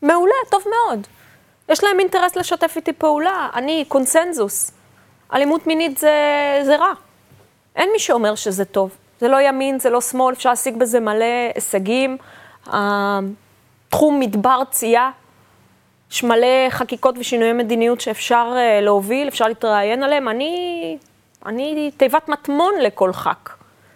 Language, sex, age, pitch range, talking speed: Hebrew, female, 20-39, 230-315 Hz, 130 wpm